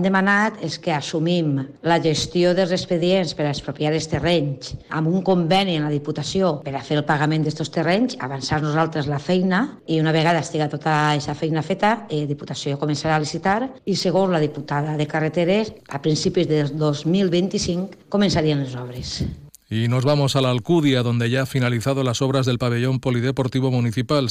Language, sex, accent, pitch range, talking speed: Spanish, female, Spanish, 115-155 Hz, 180 wpm